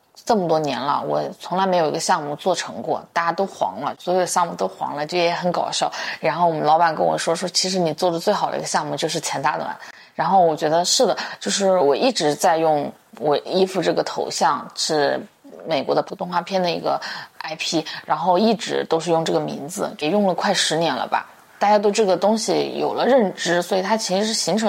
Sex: female